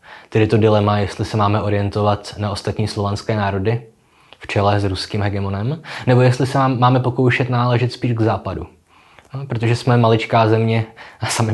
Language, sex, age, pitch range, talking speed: Czech, male, 20-39, 105-125 Hz, 165 wpm